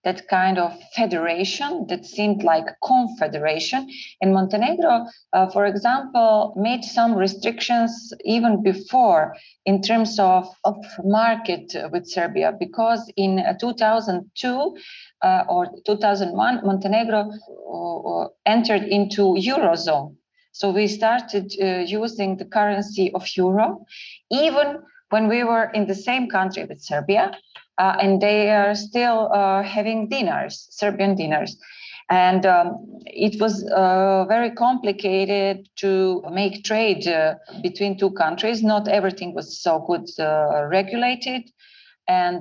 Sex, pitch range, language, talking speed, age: female, 180-225 Hz, English, 120 wpm, 30-49